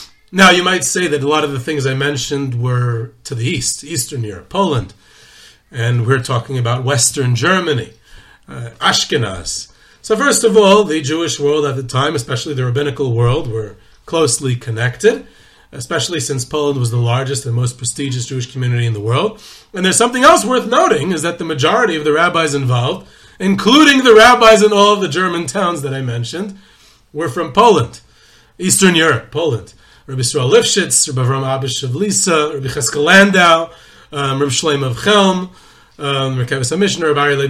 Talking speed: 175 wpm